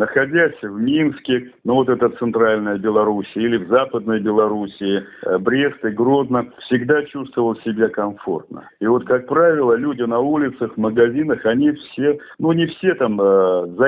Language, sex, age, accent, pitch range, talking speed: Russian, male, 50-69, native, 110-140 Hz, 150 wpm